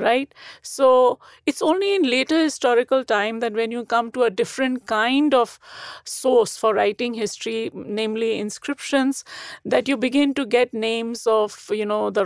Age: 50-69